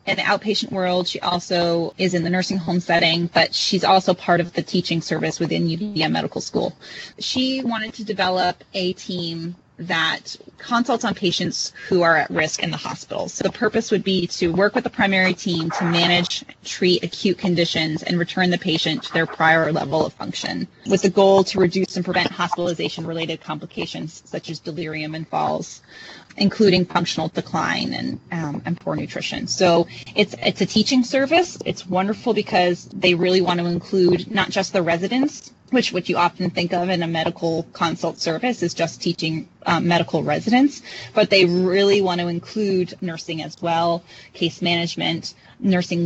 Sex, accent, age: female, American, 20-39